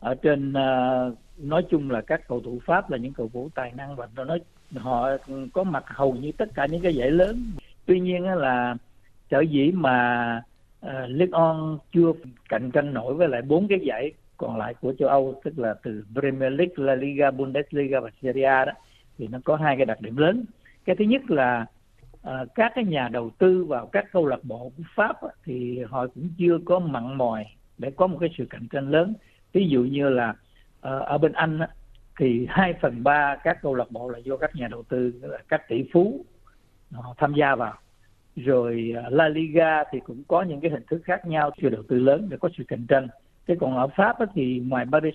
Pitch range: 125-165 Hz